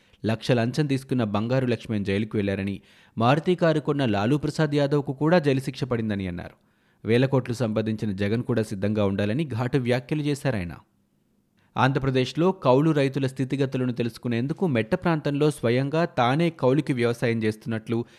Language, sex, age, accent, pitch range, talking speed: Telugu, male, 30-49, native, 110-135 Hz, 125 wpm